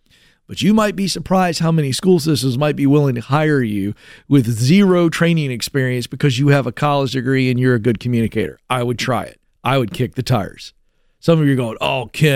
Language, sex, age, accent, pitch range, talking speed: English, male, 40-59, American, 145-185 Hz, 210 wpm